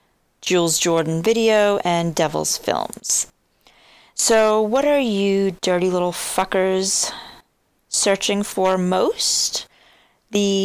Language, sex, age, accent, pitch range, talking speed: English, female, 30-49, American, 155-205 Hz, 95 wpm